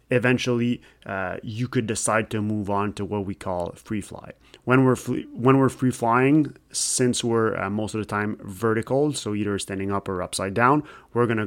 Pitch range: 105-125 Hz